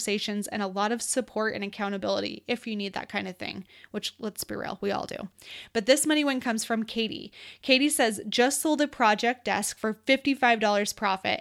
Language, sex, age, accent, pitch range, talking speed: English, female, 20-39, American, 215-260 Hz, 200 wpm